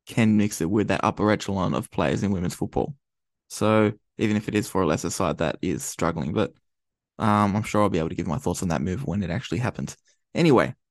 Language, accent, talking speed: English, Australian, 235 wpm